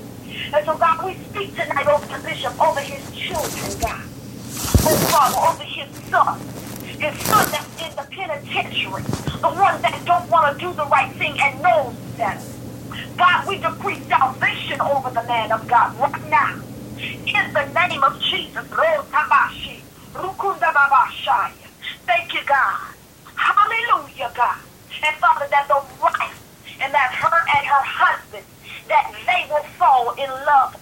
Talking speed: 140 wpm